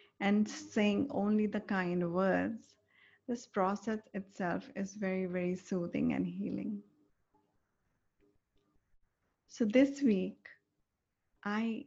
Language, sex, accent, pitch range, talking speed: English, female, Indian, 185-235 Hz, 95 wpm